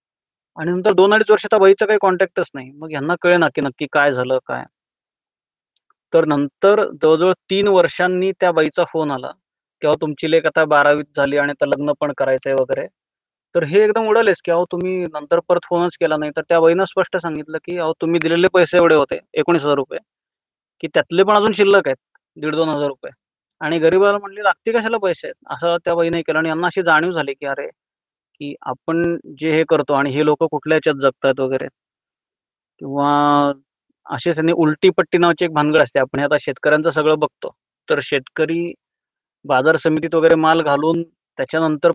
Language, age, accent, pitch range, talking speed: Marathi, 30-49, native, 150-175 Hz, 180 wpm